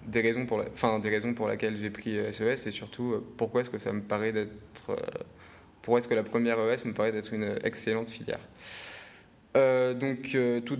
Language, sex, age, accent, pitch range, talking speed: French, male, 20-39, French, 110-125 Hz, 185 wpm